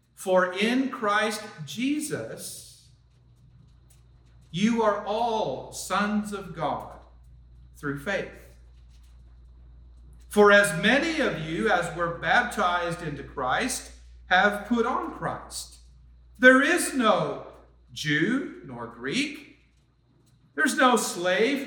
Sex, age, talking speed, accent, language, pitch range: male, 50-69, 95 wpm, American, English, 140-230 Hz